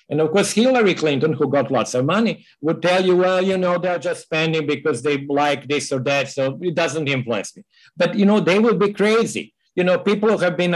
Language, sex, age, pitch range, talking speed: English, male, 50-69, 140-180 Hz, 240 wpm